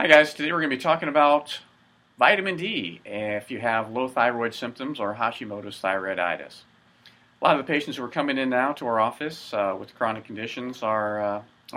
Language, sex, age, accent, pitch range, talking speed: English, male, 40-59, American, 90-125 Hz, 200 wpm